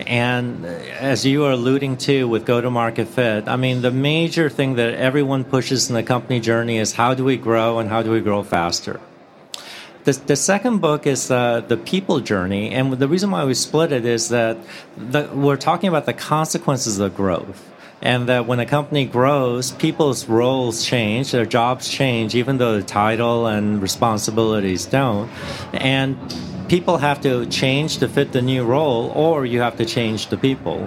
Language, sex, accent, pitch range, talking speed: English, male, American, 115-145 Hz, 180 wpm